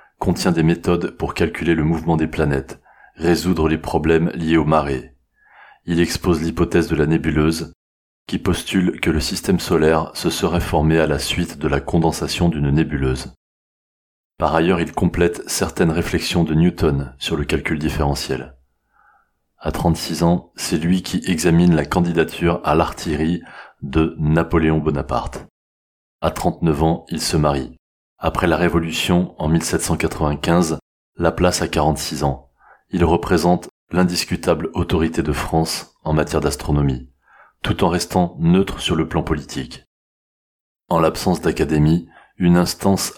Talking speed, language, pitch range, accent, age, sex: 140 wpm, French, 75-85 Hz, French, 30-49, male